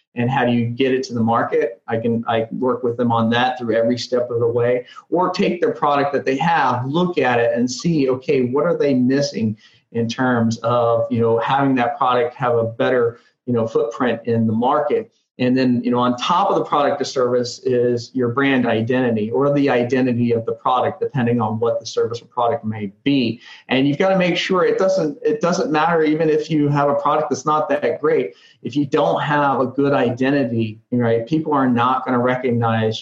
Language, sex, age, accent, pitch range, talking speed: English, male, 40-59, American, 120-145 Hz, 220 wpm